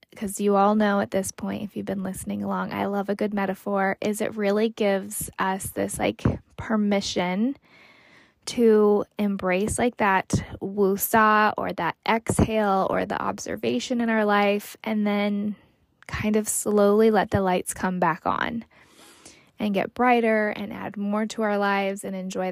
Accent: American